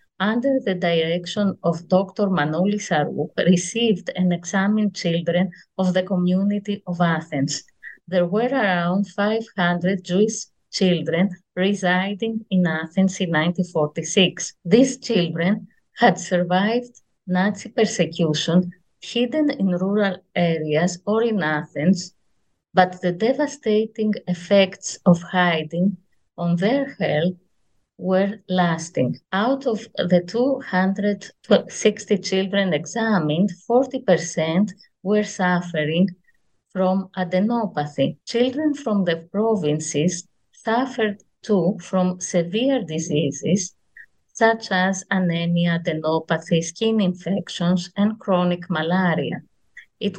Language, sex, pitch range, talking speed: English, female, 175-210 Hz, 95 wpm